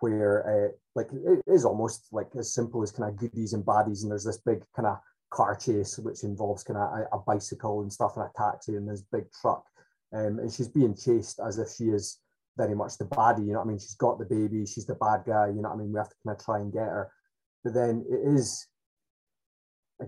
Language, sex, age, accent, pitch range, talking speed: English, male, 20-39, British, 105-125 Hz, 245 wpm